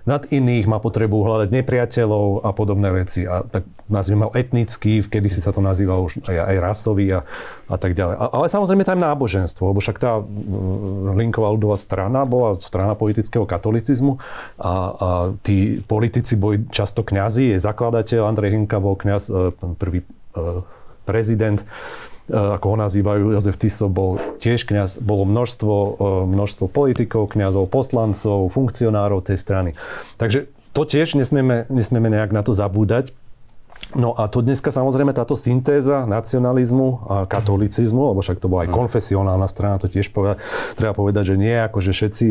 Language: Slovak